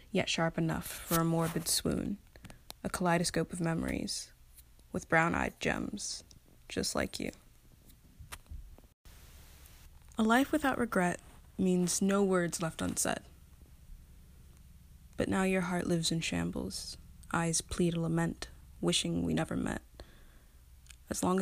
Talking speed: 120 wpm